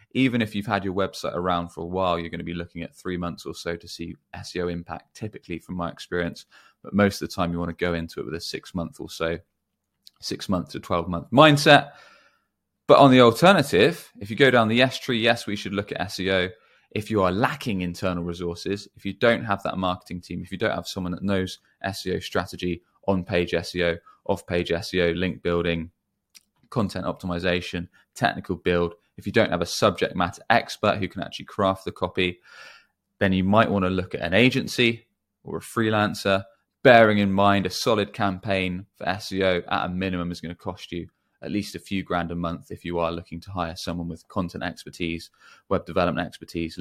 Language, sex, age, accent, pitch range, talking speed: English, male, 20-39, British, 85-100 Hz, 210 wpm